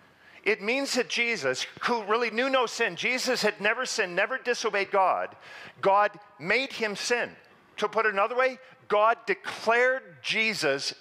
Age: 40-59